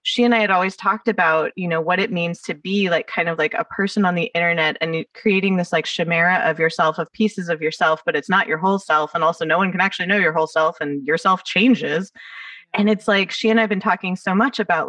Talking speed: 260 wpm